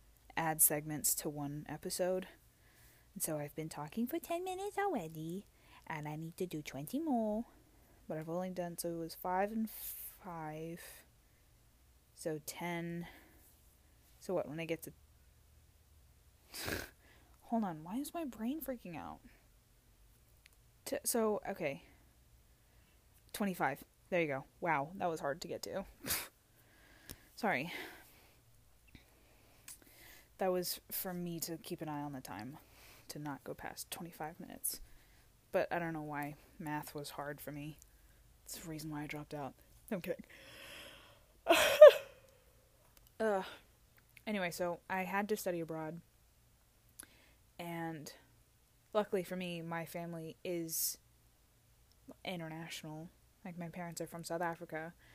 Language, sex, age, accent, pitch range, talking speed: English, female, 20-39, American, 150-185 Hz, 130 wpm